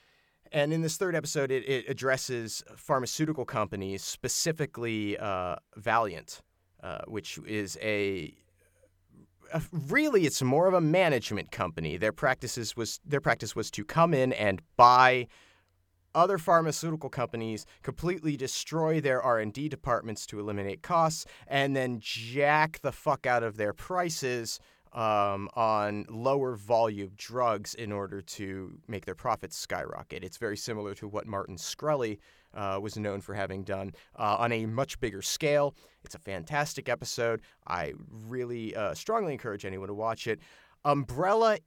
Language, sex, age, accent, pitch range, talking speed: English, male, 30-49, American, 100-145 Hz, 145 wpm